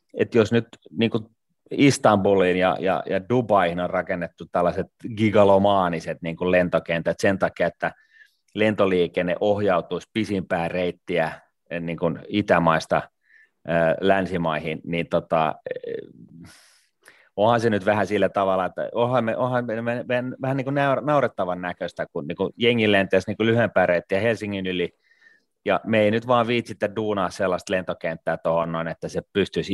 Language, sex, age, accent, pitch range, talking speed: Finnish, male, 30-49, native, 85-110 Hz, 140 wpm